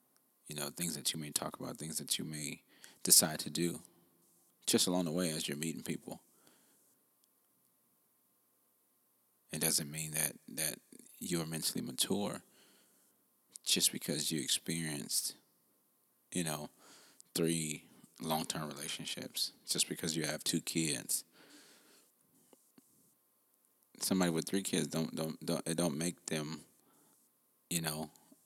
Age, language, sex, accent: 30-49, English, male, American